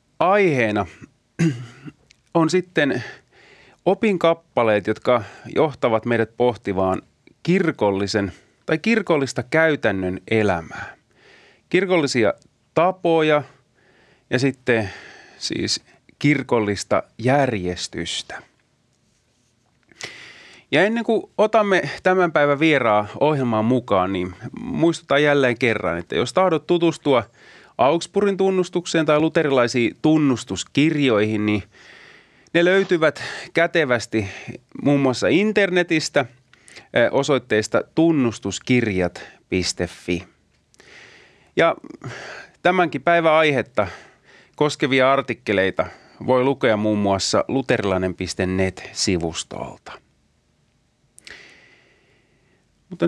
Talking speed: 70 wpm